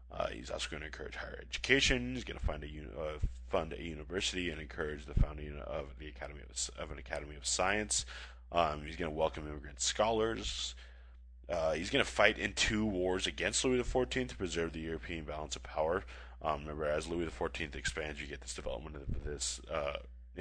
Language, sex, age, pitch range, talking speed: English, male, 20-39, 65-85 Hz, 200 wpm